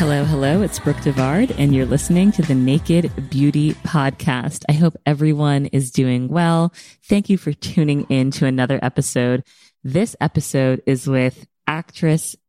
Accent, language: American, English